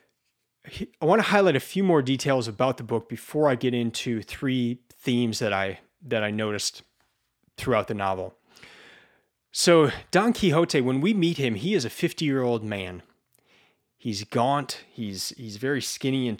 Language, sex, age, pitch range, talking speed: English, male, 30-49, 110-145 Hz, 160 wpm